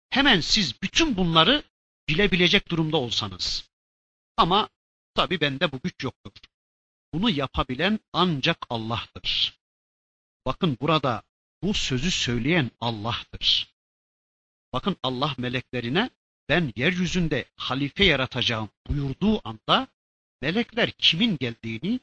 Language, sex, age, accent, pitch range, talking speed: Turkish, male, 50-69, native, 120-180 Hz, 95 wpm